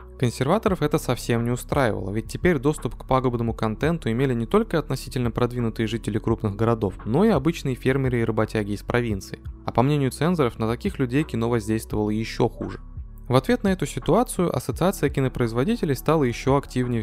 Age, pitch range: 20-39, 110-145 Hz